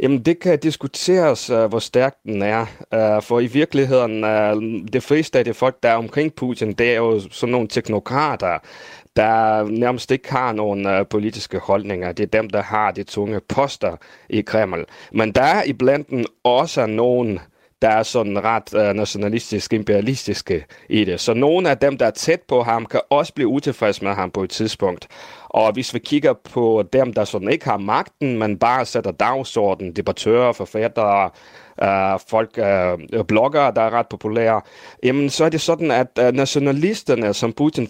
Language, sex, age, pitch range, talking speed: Danish, male, 30-49, 105-135 Hz, 165 wpm